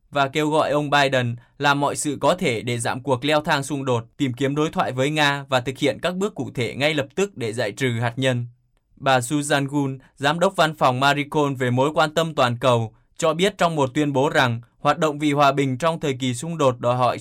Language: Vietnamese